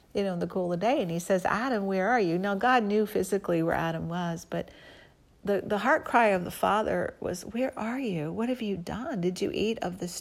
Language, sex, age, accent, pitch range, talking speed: English, female, 40-59, American, 170-205 Hz, 240 wpm